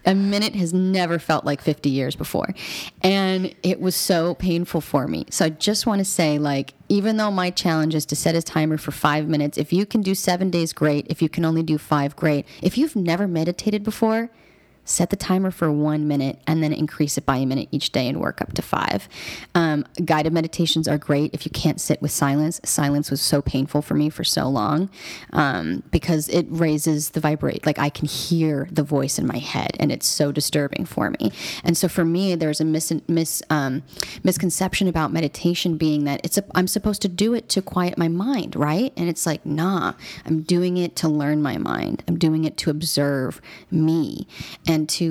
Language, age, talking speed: English, 30-49, 215 wpm